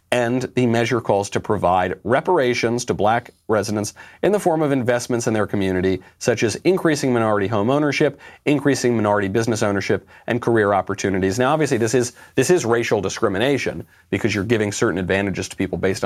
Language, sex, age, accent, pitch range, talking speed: English, male, 40-59, American, 95-125 Hz, 175 wpm